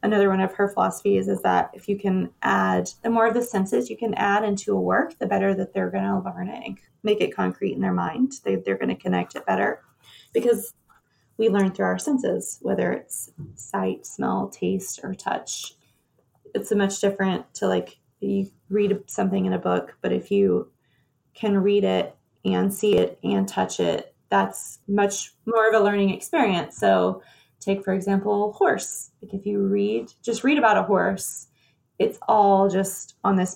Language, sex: English, female